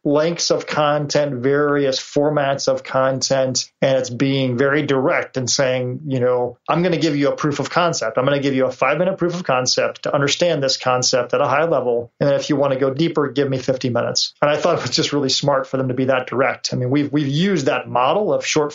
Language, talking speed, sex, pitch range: English, 250 wpm, male, 130-150 Hz